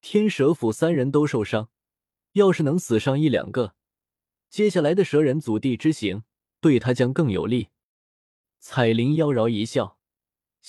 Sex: male